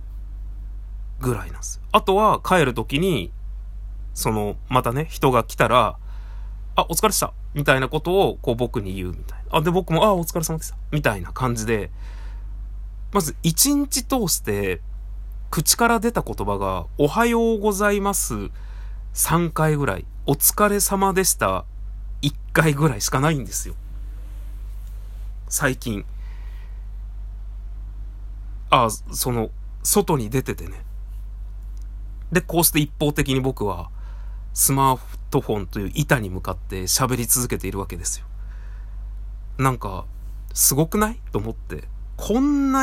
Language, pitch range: Japanese, 100-150 Hz